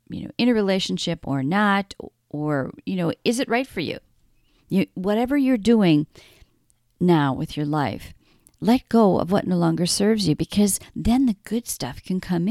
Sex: female